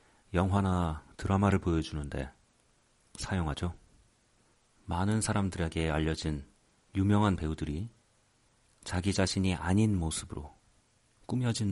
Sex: male